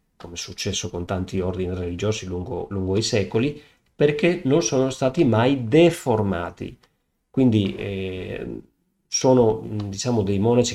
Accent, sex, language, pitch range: native, male, Italian, 100-135 Hz